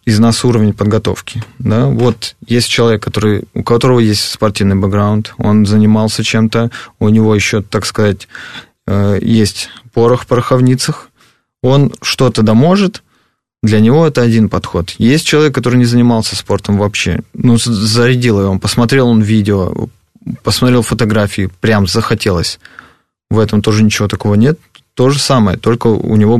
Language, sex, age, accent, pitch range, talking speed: Russian, male, 20-39, native, 105-120 Hz, 140 wpm